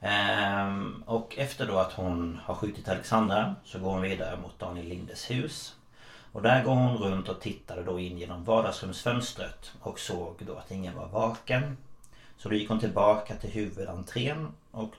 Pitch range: 95-115 Hz